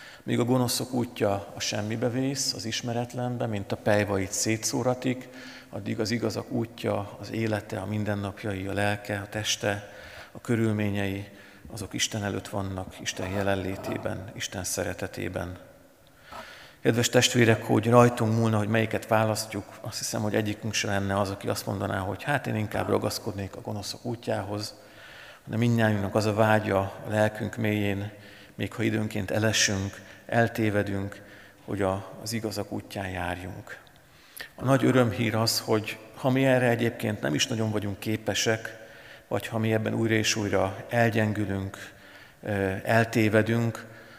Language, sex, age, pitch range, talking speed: Hungarian, male, 50-69, 100-115 Hz, 140 wpm